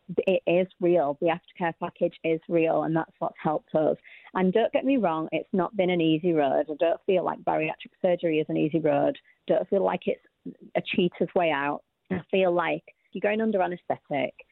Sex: female